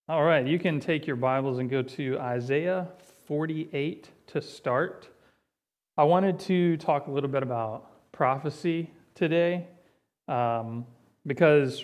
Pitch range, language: 130-165 Hz, English